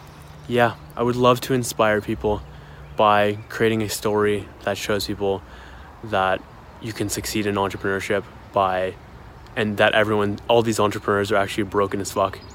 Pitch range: 100-110 Hz